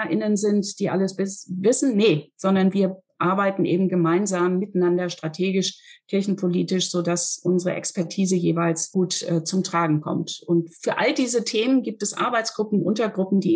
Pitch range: 180-210 Hz